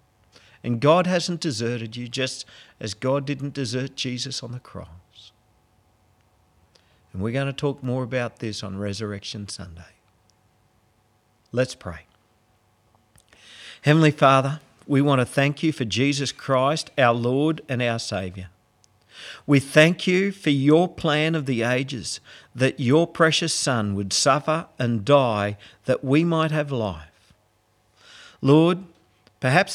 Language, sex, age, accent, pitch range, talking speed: English, male, 50-69, Australian, 105-150 Hz, 135 wpm